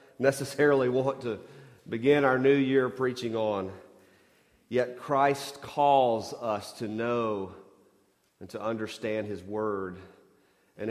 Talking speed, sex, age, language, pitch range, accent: 115 wpm, male, 40-59, English, 105-135 Hz, American